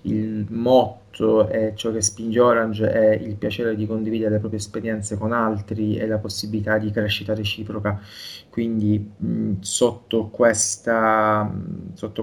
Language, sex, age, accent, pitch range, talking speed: Italian, male, 20-39, native, 105-120 Hz, 140 wpm